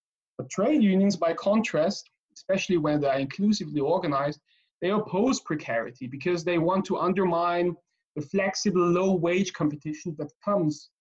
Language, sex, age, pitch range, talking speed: English, male, 30-49, 150-195 Hz, 130 wpm